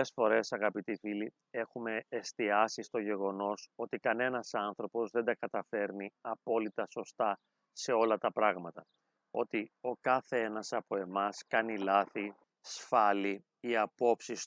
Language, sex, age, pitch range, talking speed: Greek, male, 30-49, 105-120 Hz, 130 wpm